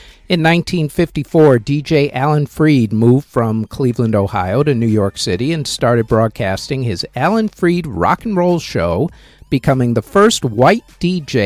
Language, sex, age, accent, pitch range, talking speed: English, male, 50-69, American, 110-155 Hz, 145 wpm